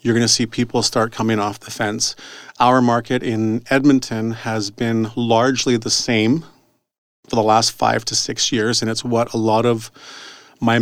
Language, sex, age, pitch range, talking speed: English, male, 40-59, 110-125 Hz, 175 wpm